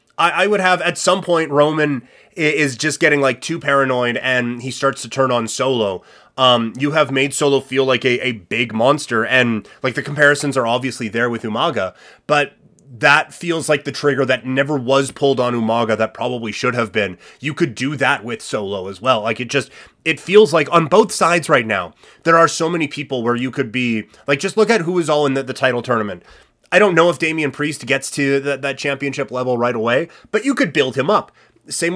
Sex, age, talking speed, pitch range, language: male, 30-49, 220 wpm, 120-150 Hz, English